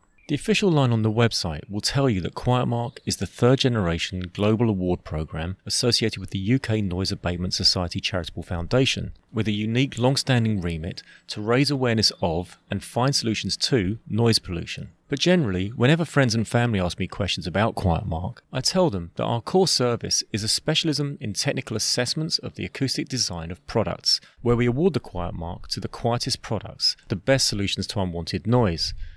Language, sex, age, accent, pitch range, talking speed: English, male, 30-49, British, 95-125 Hz, 180 wpm